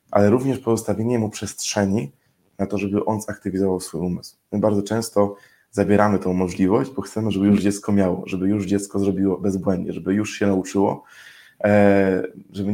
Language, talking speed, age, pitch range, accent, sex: Polish, 160 wpm, 20-39, 95-100 Hz, native, male